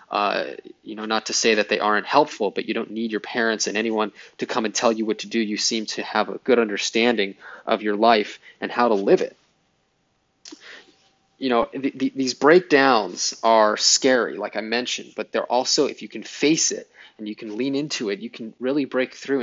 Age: 20-39